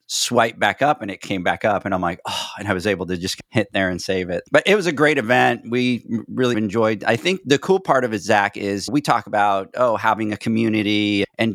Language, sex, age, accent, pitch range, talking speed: English, male, 40-59, American, 100-120 Hz, 255 wpm